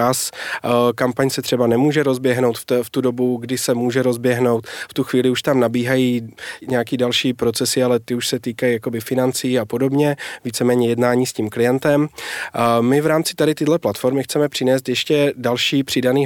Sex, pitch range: male, 120-140 Hz